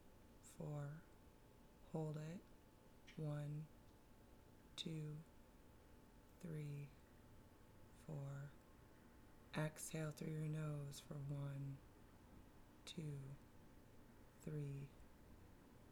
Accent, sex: American, female